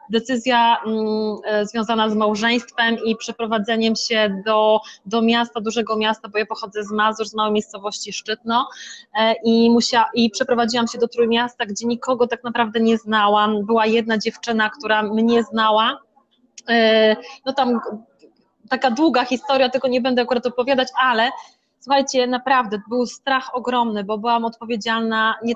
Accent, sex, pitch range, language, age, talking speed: native, female, 225-255 Hz, Polish, 20-39, 140 wpm